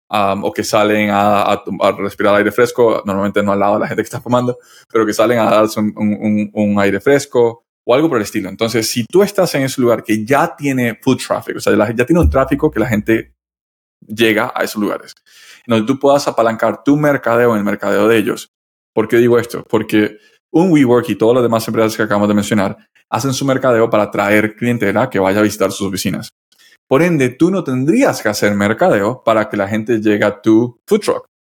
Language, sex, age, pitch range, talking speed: Spanish, male, 20-39, 105-130 Hz, 225 wpm